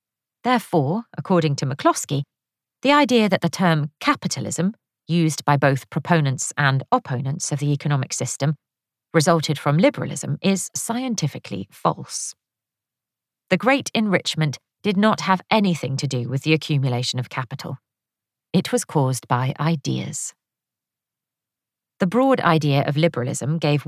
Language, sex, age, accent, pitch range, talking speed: English, female, 40-59, British, 130-175 Hz, 130 wpm